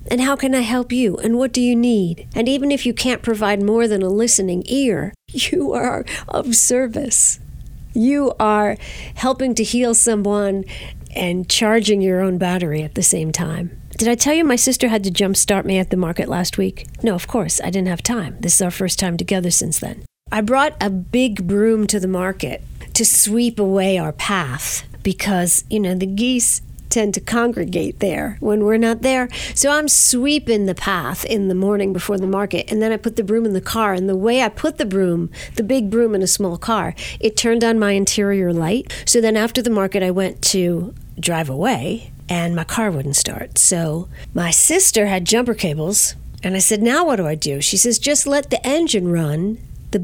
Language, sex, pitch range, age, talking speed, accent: English, female, 180-235 Hz, 50-69, 210 wpm, American